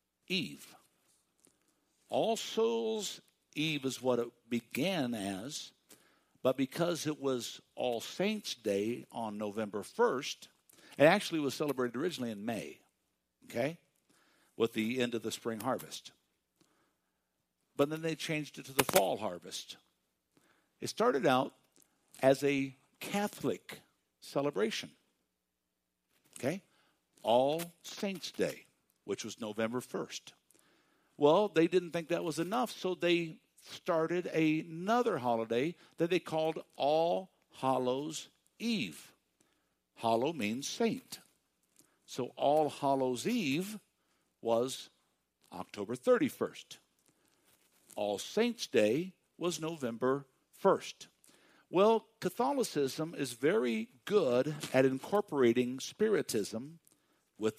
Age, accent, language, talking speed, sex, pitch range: 60-79, American, English, 105 wpm, male, 120-175 Hz